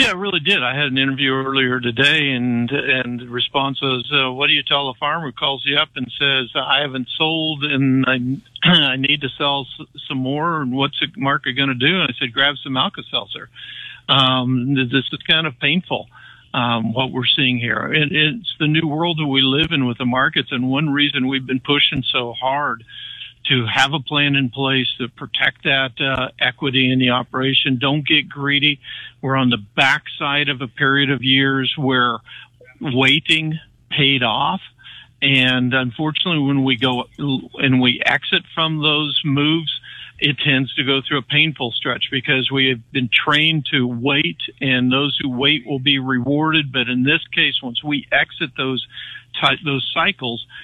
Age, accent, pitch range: 60-79, American, 130-145 Hz